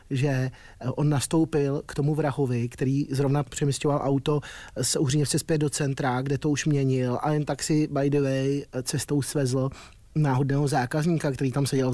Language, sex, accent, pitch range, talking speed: Czech, male, native, 125-140 Hz, 165 wpm